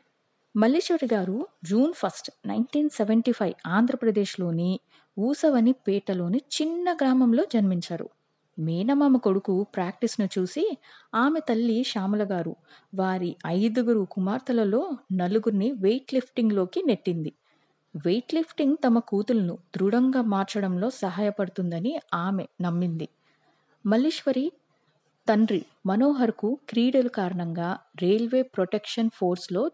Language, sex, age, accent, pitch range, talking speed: Telugu, female, 20-39, native, 185-250 Hz, 85 wpm